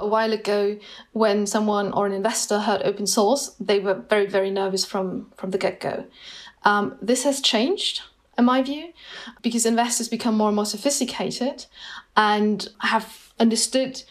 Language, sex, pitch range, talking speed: English, female, 195-230 Hz, 155 wpm